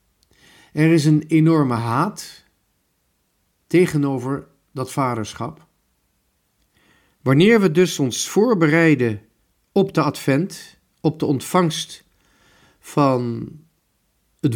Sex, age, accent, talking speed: male, 50-69, Dutch, 85 wpm